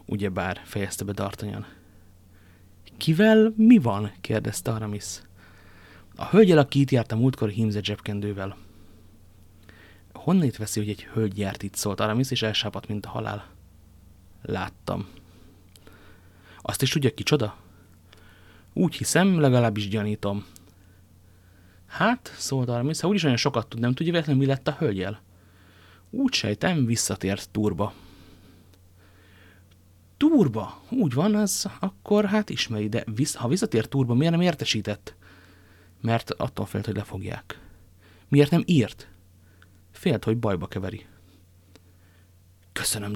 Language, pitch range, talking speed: Hungarian, 90-125 Hz, 135 wpm